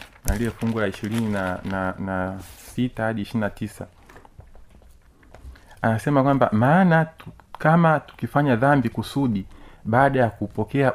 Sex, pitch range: male, 105-130 Hz